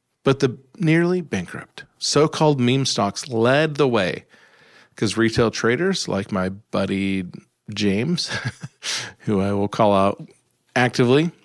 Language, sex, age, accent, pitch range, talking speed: English, male, 40-59, American, 110-140 Hz, 120 wpm